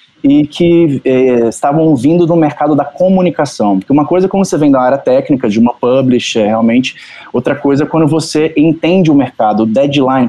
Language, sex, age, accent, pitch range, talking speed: Portuguese, male, 20-39, Brazilian, 130-160 Hz, 190 wpm